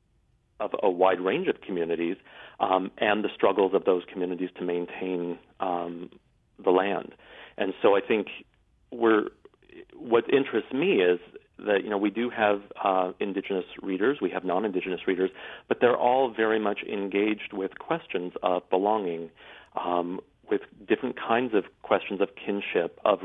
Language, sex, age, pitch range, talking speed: English, male, 40-59, 90-100 Hz, 150 wpm